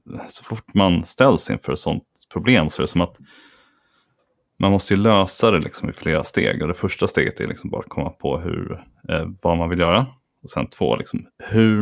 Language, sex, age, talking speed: Swedish, male, 30-49, 220 wpm